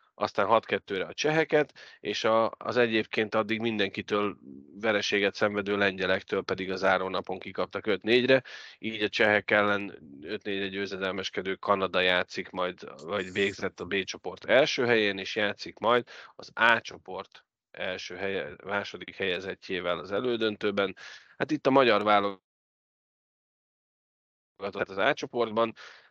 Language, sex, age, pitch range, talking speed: Hungarian, male, 30-49, 95-110 Hz, 120 wpm